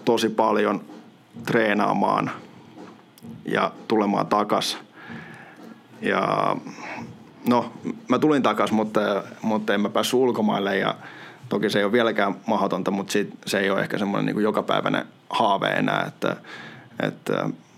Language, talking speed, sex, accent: Finnish, 125 wpm, male, native